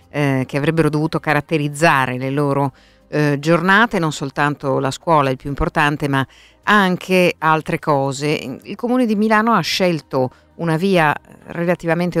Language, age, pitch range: Italian, 50-69, 135-170 Hz